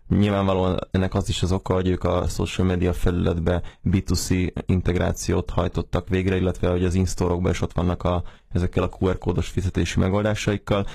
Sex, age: male, 20-39